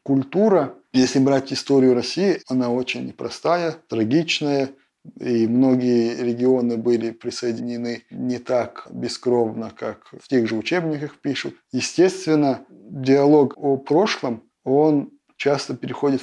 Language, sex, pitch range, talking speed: Russian, male, 125-150 Hz, 115 wpm